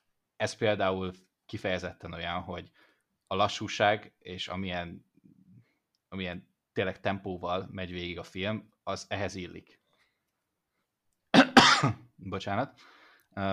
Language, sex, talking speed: Hungarian, male, 90 wpm